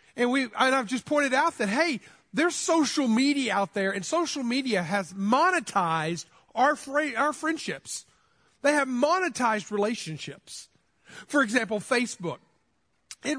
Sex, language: male, English